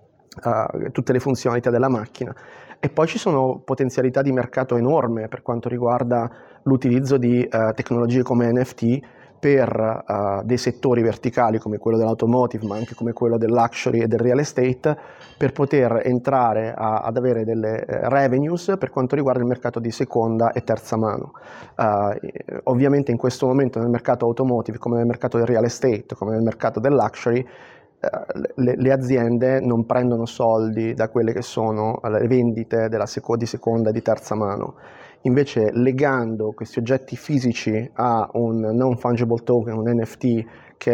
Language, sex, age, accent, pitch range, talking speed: Italian, male, 30-49, native, 115-130 Hz, 155 wpm